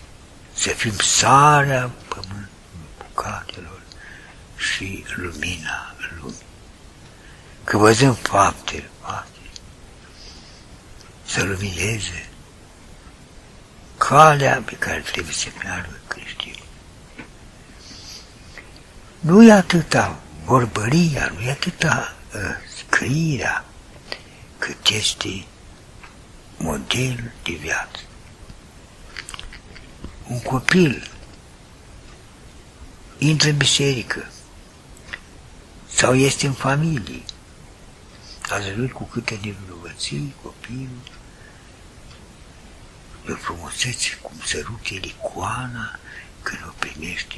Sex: male